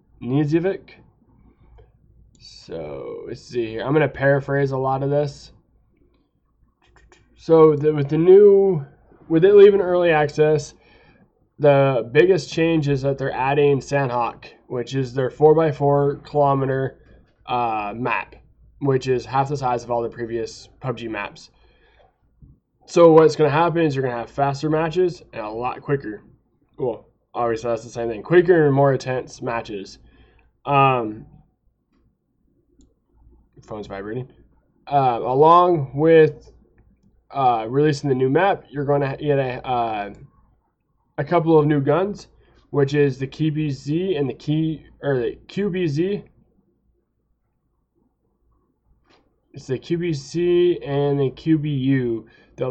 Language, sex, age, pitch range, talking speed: English, male, 20-39, 130-160 Hz, 130 wpm